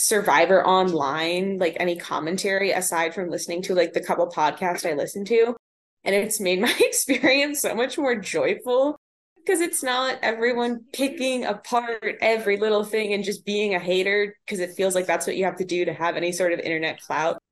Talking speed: 190 wpm